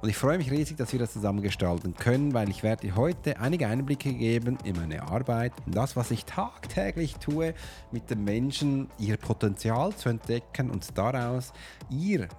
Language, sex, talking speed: German, male, 185 wpm